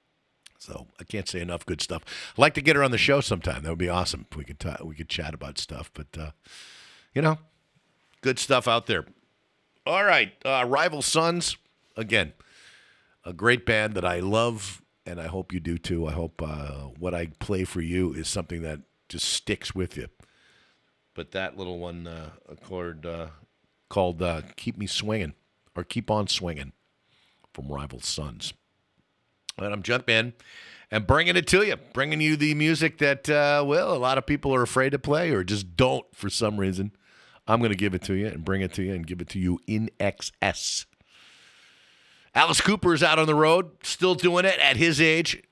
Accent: American